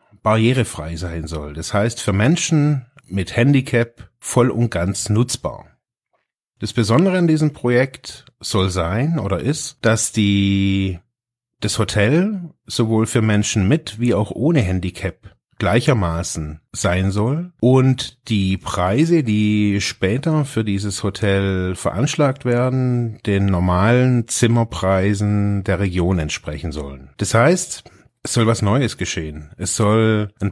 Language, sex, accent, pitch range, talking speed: German, male, German, 100-125 Hz, 125 wpm